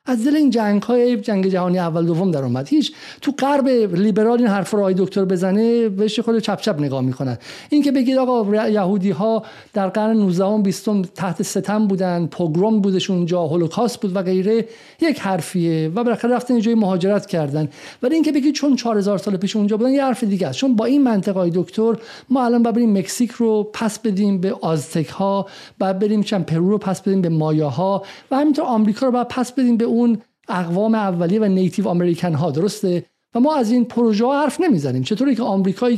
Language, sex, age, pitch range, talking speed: Persian, male, 50-69, 190-245 Hz, 185 wpm